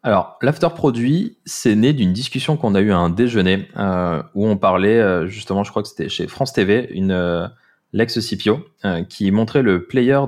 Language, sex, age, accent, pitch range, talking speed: French, male, 20-39, French, 90-105 Hz, 185 wpm